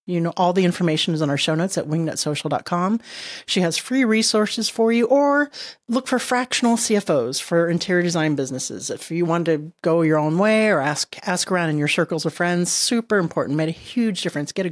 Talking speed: 210 wpm